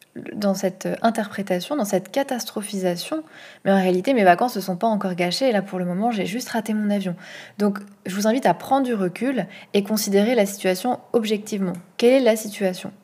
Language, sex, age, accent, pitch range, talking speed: French, female, 20-39, French, 190-220 Hz, 200 wpm